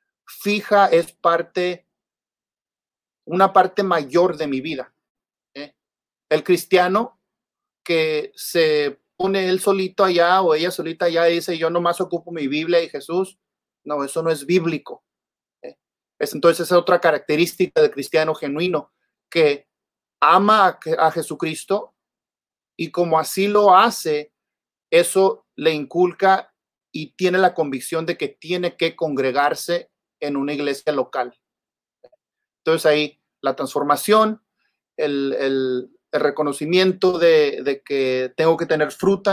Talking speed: 135 wpm